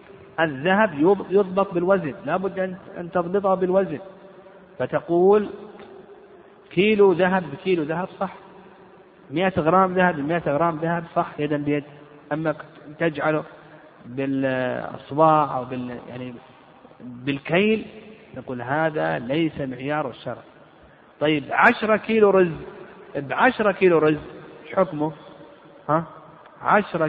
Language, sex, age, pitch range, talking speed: Arabic, male, 50-69, 150-190 Hz, 100 wpm